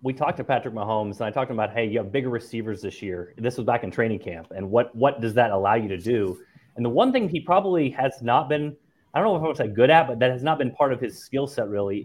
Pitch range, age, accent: 115-150 Hz, 30-49, American